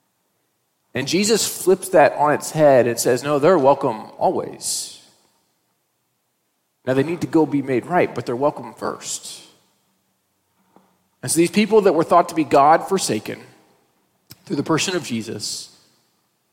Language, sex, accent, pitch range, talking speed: Danish, male, American, 130-170 Hz, 145 wpm